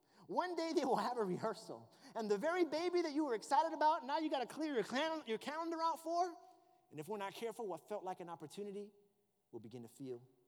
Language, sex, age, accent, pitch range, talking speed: English, male, 30-49, American, 150-250 Hz, 225 wpm